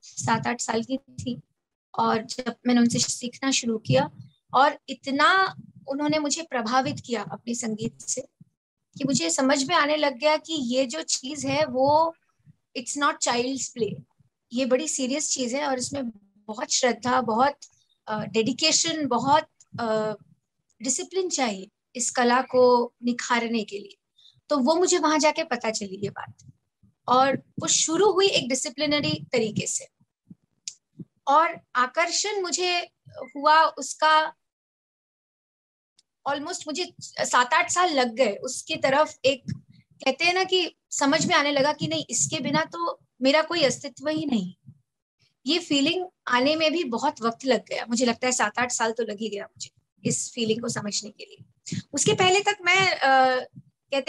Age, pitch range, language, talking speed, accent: 20-39, 235-310 Hz, Hindi, 155 wpm, native